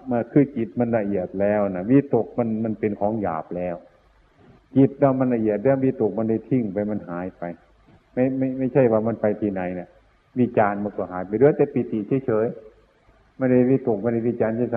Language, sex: Thai, male